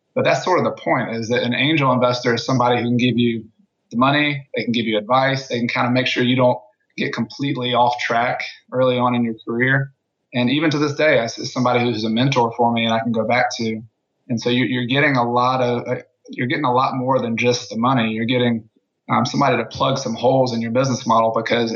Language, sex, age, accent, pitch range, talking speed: English, male, 20-39, American, 115-130 Hz, 245 wpm